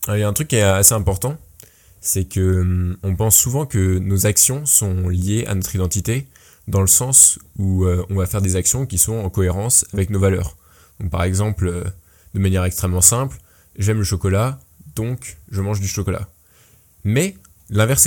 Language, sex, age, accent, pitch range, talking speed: French, male, 20-39, French, 95-115 Hz, 195 wpm